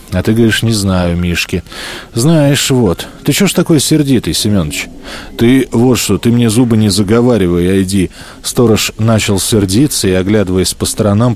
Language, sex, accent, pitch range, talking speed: Russian, male, native, 95-130 Hz, 160 wpm